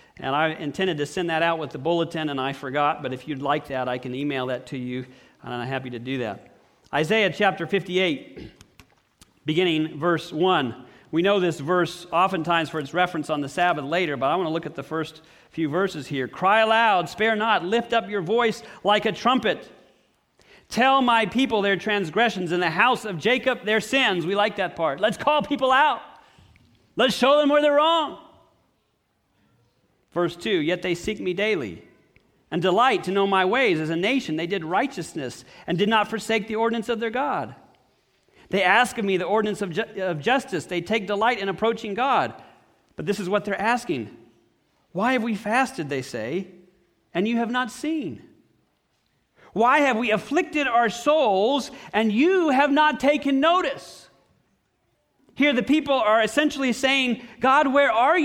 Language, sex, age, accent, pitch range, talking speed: English, male, 40-59, American, 165-240 Hz, 180 wpm